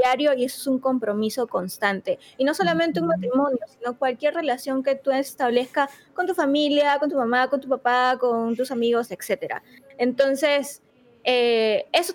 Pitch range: 240-295 Hz